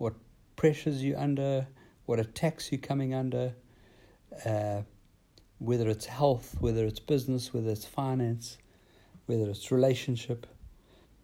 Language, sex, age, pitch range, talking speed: English, male, 60-79, 100-130 Hz, 110 wpm